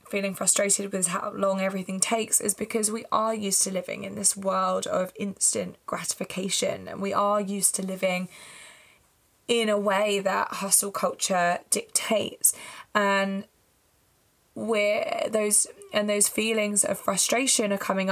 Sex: female